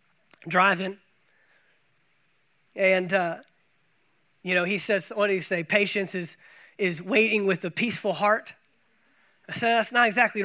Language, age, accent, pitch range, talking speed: English, 20-39, American, 205-275 Hz, 140 wpm